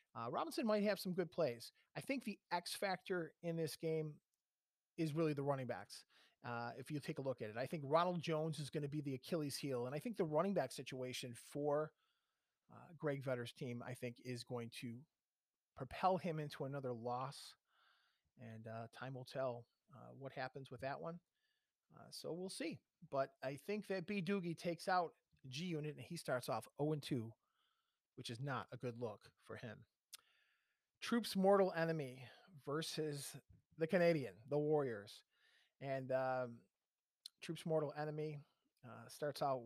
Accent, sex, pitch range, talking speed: American, male, 125-165 Hz, 175 wpm